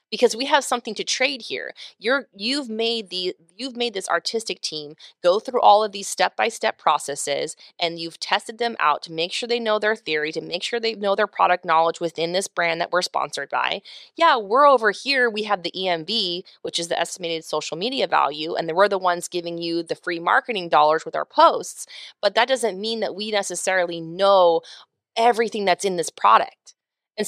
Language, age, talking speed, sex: English, 20-39, 200 wpm, female